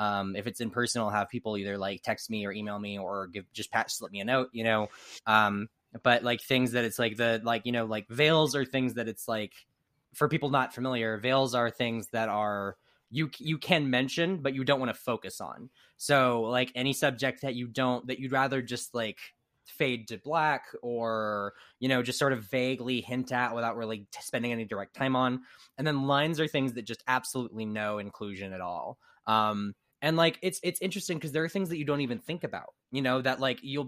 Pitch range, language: 115-140 Hz, English